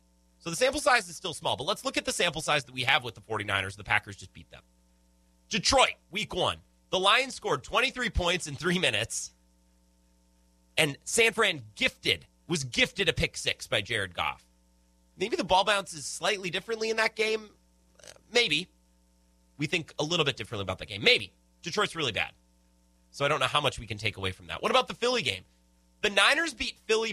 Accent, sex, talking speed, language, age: American, male, 205 wpm, English, 30-49